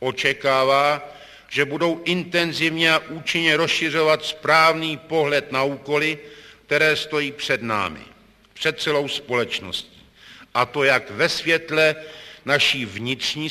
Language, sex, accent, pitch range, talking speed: Czech, male, native, 135-155 Hz, 110 wpm